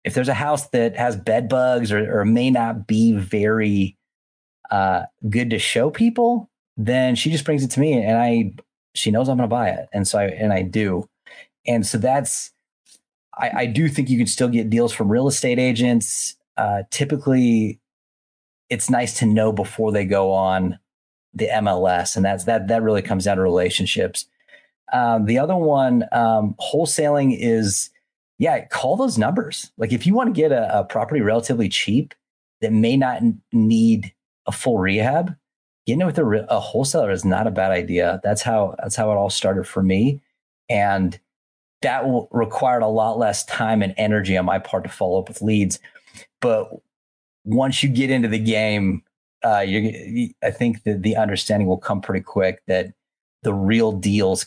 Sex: male